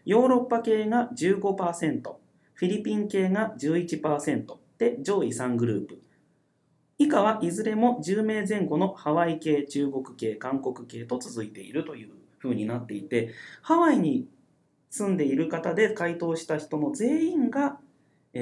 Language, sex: Japanese, male